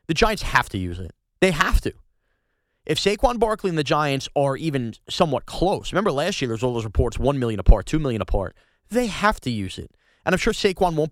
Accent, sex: American, male